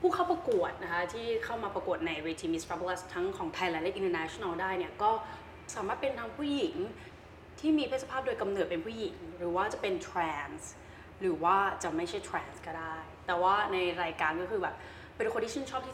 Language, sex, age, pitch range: Thai, female, 20-39, 180-270 Hz